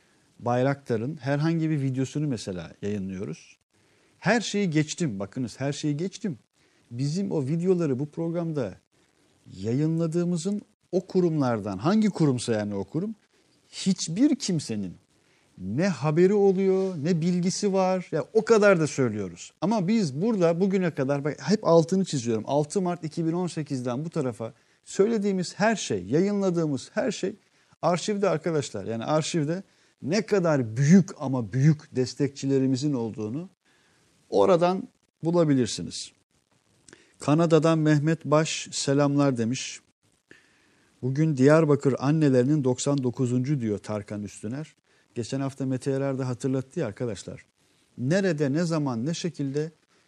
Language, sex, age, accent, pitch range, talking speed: Turkish, male, 40-59, native, 130-175 Hz, 115 wpm